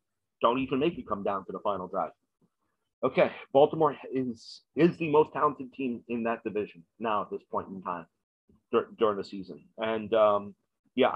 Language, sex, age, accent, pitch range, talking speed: English, male, 30-49, American, 105-125 Hz, 185 wpm